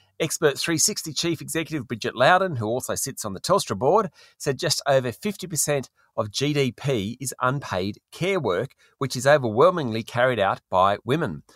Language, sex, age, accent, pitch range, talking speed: English, male, 40-59, Australian, 105-145 Hz, 155 wpm